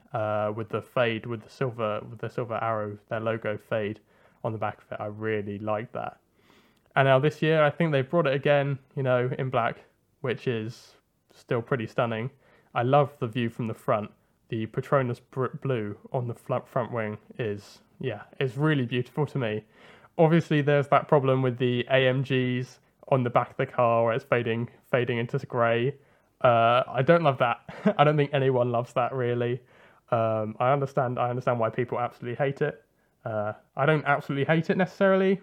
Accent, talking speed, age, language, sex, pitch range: British, 190 wpm, 20-39, English, male, 115-140 Hz